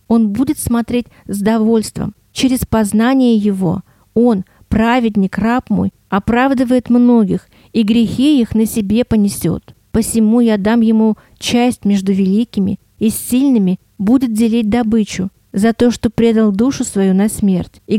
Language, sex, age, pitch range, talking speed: Russian, female, 40-59, 200-245 Hz, 135 wpm